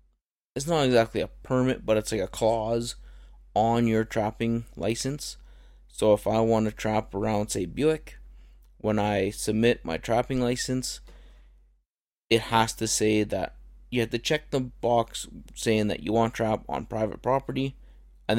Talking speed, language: 165 wpm, English